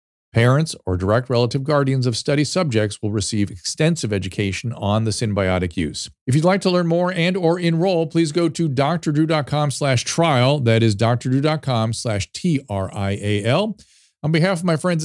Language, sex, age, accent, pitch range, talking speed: English, male, 40-59, American, 105-145 Hz, 165 wpm